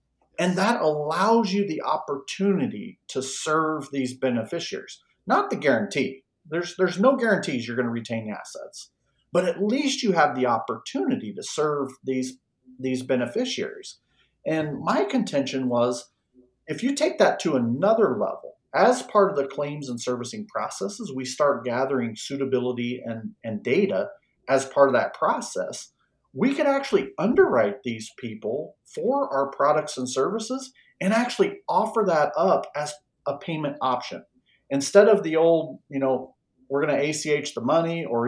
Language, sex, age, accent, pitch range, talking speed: English, male, 40-59, American, 130-195 Hz, 155 wpm